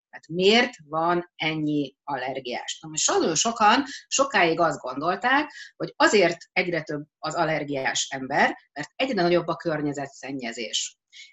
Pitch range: 155-200 Hz